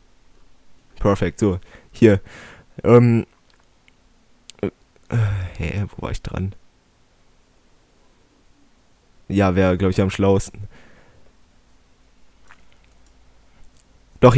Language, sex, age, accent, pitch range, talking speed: German, male, 20-39, German, 85-110 Hz, 70 wpm